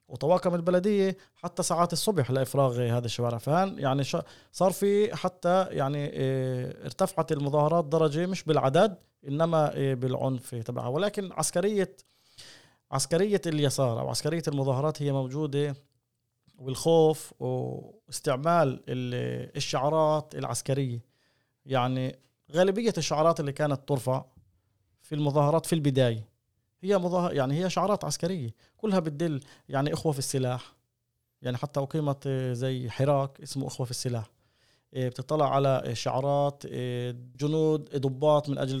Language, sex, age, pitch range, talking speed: Arabic, male, 30-49, 130-160 Hz, 110 wpm